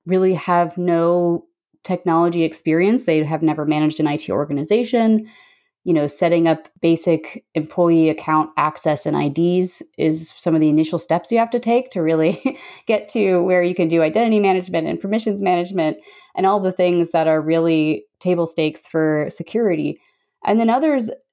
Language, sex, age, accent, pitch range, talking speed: English, female, 20-39, American, 155-185 Hz, 165 wpm